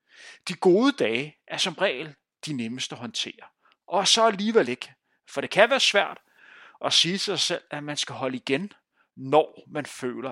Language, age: Danish, 30-49